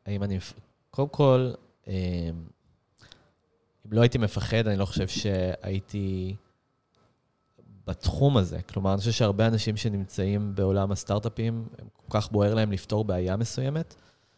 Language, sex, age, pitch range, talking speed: Hebrew, male, 20-39, 100-115 Hz, 130 wpm